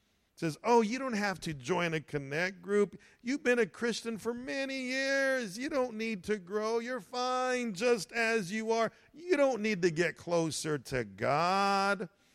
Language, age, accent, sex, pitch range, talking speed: English, 50-69, American, male, 125-200 Hz, 175 wpm